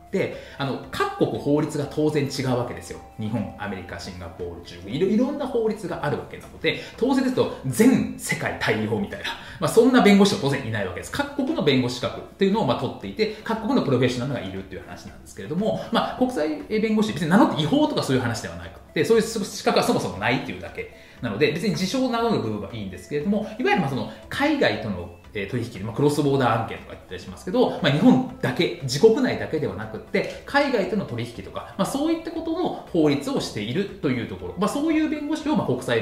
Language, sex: Japanese, male